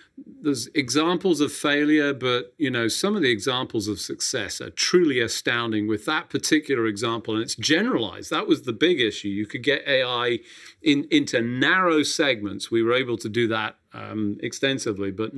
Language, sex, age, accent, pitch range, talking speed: English, male, 40-59, British, 110-160 Hz, 175 wpm